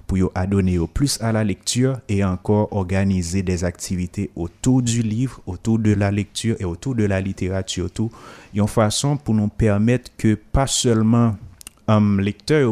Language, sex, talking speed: French, male, 175 wpm